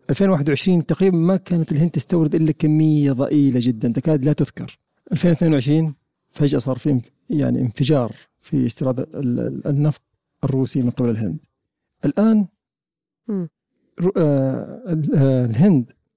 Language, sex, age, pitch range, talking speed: Arabic, male, 40-59, 135-175 Hz, 105 wpm